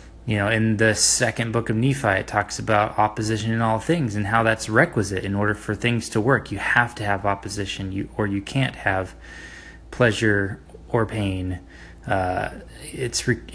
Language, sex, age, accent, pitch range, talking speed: English, male, 20-39, American, 100-120 Hz, 180 wpm